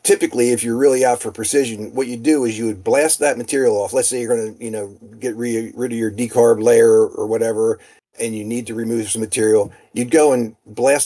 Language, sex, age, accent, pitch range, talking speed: English, male, 40-59, American, 115-165 Hz, 240 wpm